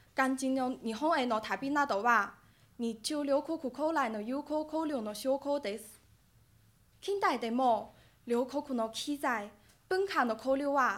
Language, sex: Japanese, female